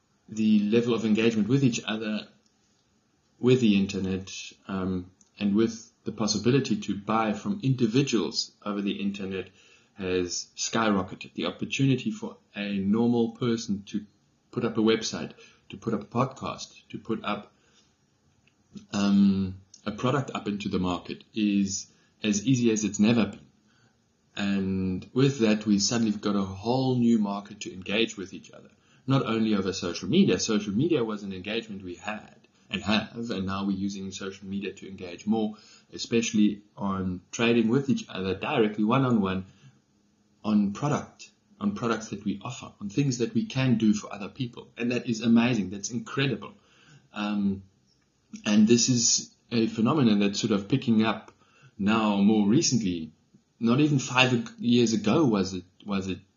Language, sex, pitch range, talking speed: English, male, 100-115 Hz, 160 wpm